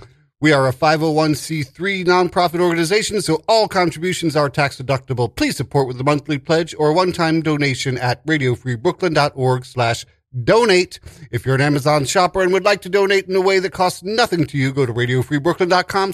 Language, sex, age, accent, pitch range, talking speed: English, male, 40-59, American, 130-180 Hz, 170 wpm